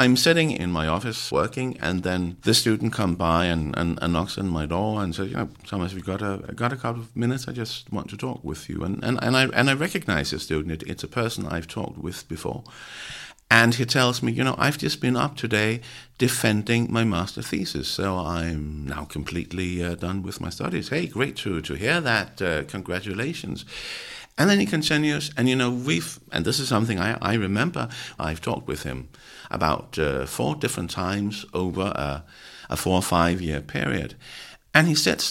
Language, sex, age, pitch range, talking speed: English, male, 60-79, 80-115 Hz, 210 wpm